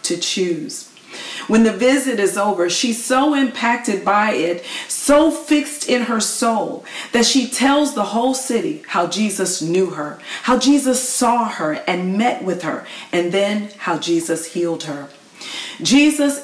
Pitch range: 185-250 Hz